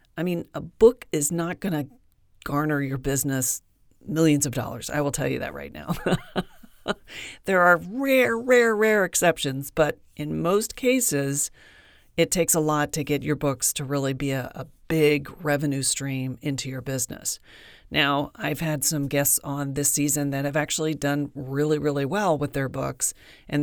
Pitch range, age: 135-160 Hz, 40-59